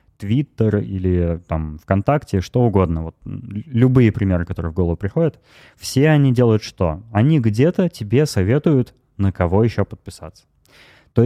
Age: 20-39